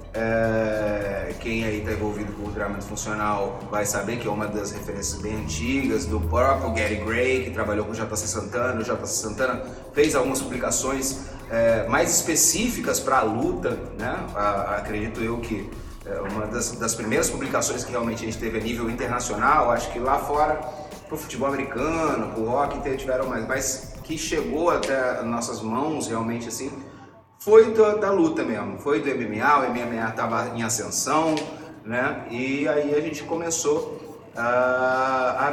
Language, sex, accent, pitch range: Portuguese, male, Brazilian, 110-145 Hz